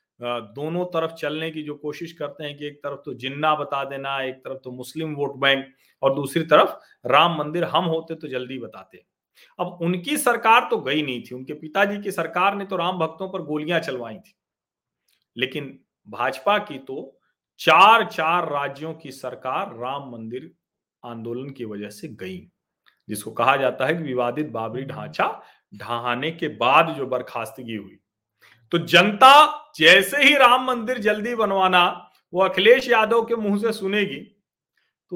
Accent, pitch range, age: native, 130-190 Hz, 40-59